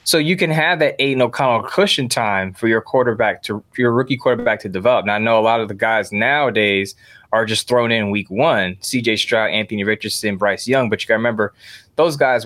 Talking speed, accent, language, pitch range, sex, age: 225 wpm, American, English, 105-135 Hz, male, 20-39